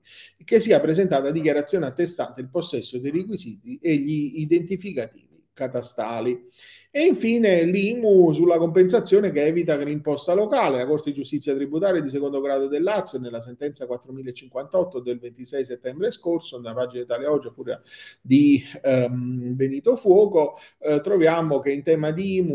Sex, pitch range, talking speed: male, 125-185 Hz, 150 wpm